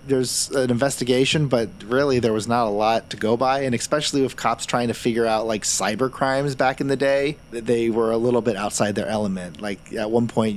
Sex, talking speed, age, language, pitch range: male, 225 wpm, 30-49, English, 100-130 Hz